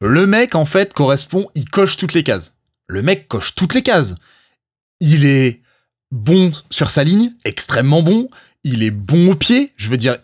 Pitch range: 105-155 Hz